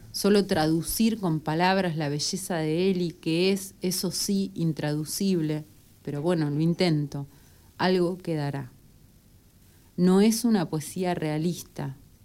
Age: 70-89